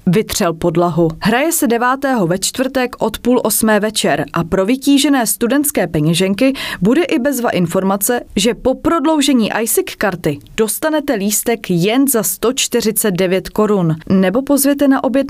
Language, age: Czech, 20-39